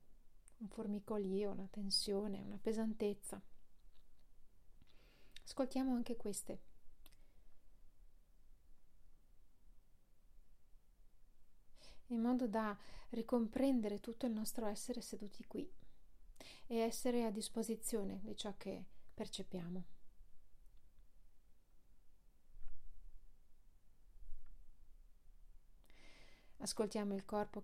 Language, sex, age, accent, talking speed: Italian, female, 40-59, native, 65 wpm